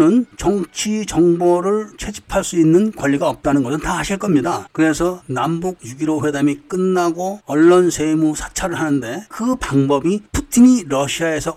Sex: male